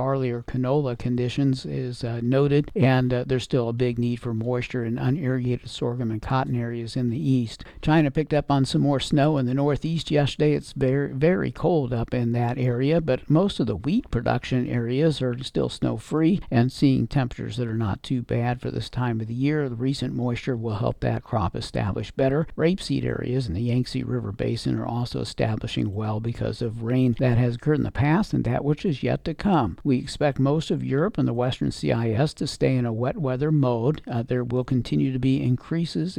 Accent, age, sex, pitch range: American, 60-79, male, 120-140 Hz